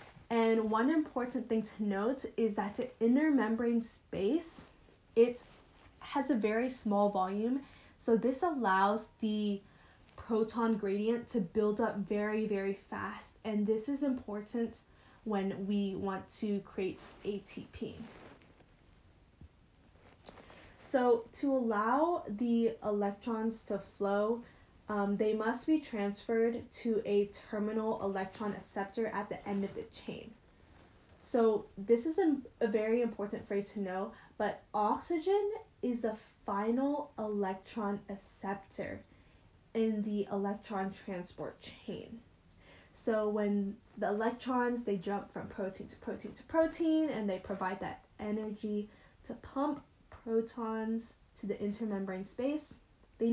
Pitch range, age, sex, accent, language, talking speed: 200-235 Hz, 10-29, female, American, English, 125 wpm